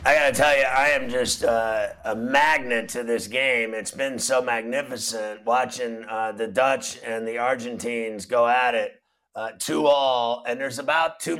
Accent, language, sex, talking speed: American, English, male, 185 wpm